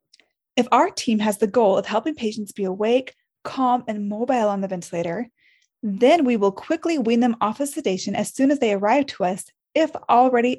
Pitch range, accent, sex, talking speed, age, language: 205-260 Hz, American, female, 200 wpm, 20-39, English